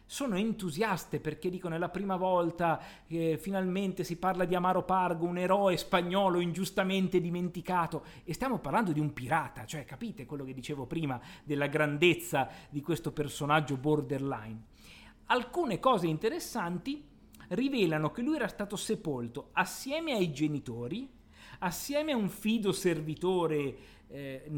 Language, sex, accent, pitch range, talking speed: Italian, male, native, 140-195 Hz, 140 wpm